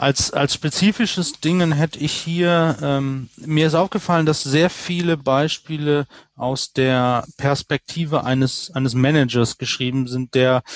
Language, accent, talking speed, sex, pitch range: German, German, 135 wpm, male, 125-150 Hz